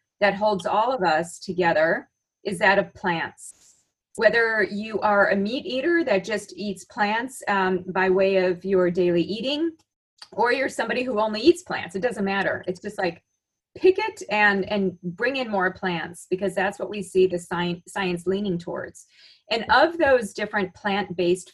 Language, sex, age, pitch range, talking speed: English, female, 30-49, 185-215 Hz, 175 wpm